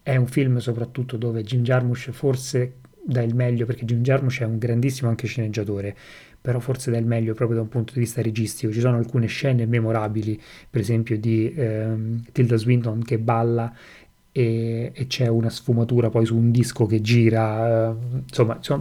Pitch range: 115-125 Hz